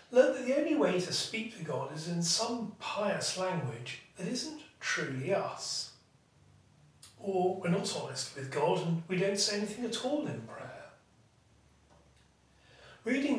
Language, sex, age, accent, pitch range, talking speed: English, male, 40-59, British, 145-220 Hz, 150 wpm